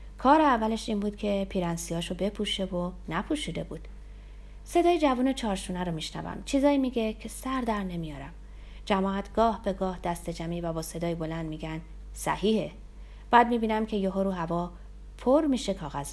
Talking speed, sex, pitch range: 155 wpm, female, 165-225 Hz